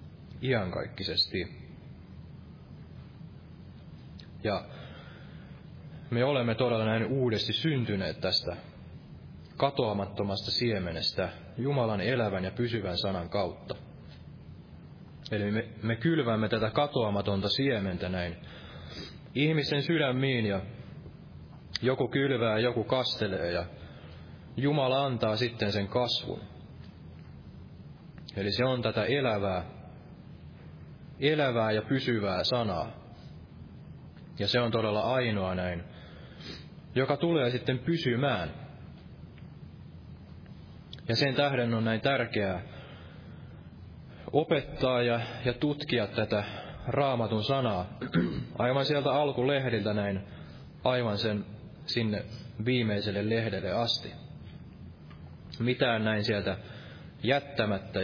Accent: native